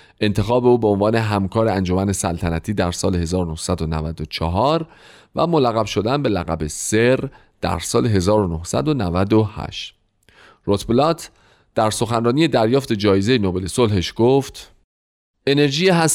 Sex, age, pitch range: male, 40-59, 95-130 Hz